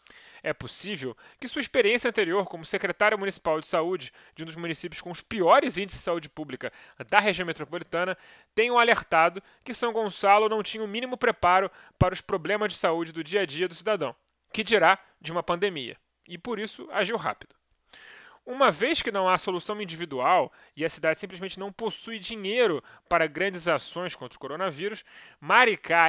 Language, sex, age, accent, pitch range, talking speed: Portuguese, male, 20-39, Brazilian, 165-210 Hz, 175 wpm